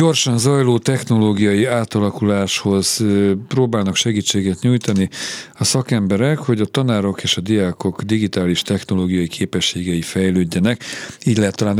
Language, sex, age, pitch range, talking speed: Hungarian, male, 40-59, 95-120 Hz, 110 wpm